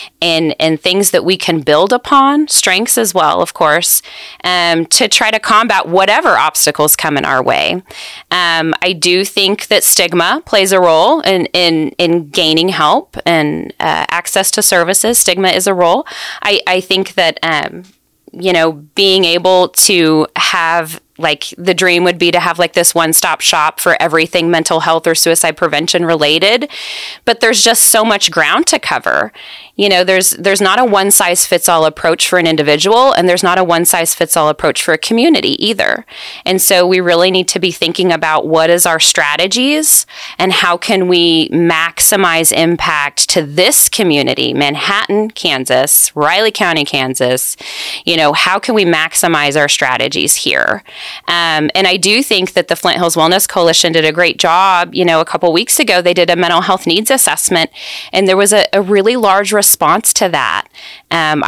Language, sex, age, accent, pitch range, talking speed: English, female, 20-39, American, 165-195 Hz, 175 wpm